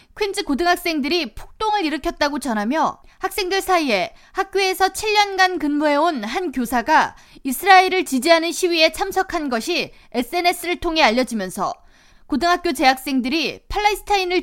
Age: 20-39